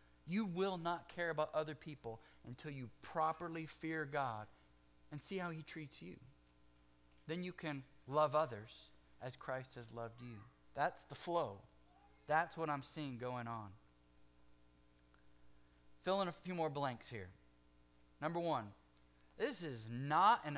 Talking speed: 145 wpm